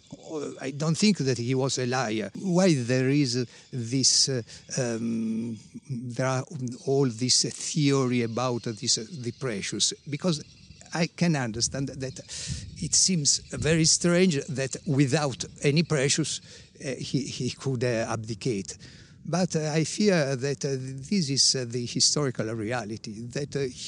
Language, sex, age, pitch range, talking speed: English, male, 50-69, 125-155 Hz, 140 wpm